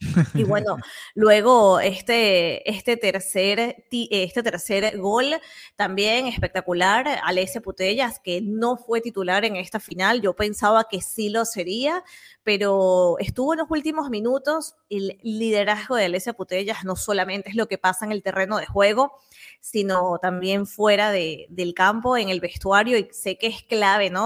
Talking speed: 155 wpm